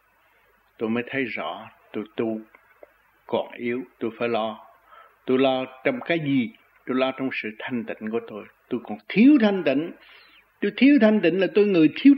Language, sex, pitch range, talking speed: Vietnamese, male, 120-195 Hz, 180 wpm